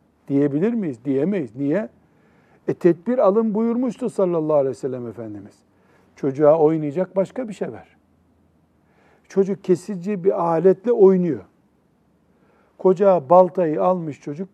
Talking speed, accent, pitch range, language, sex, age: 115 wpm, native, 145-195 Hz, Turkish, male, 60-79